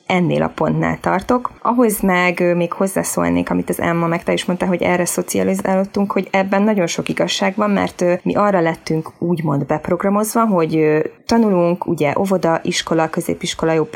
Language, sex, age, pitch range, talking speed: Hungarian, female, 20-39, 160-210 Hz, 160 wpm